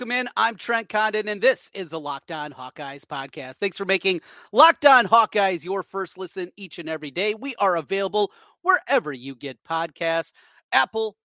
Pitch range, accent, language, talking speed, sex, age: 165-240 Hz, American, English, 175 wpm, male, 30-49